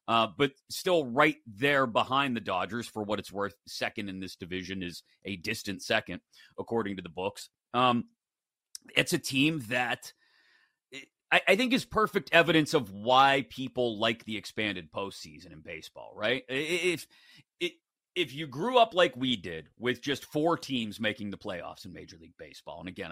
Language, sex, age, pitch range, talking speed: English, male, 30-49, 110-155 Hz, 170 wpm